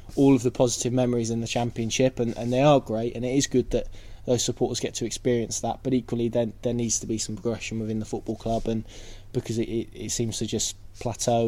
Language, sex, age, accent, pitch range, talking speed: English, male, 20-39, British, 110-125 Hz, 235 wpm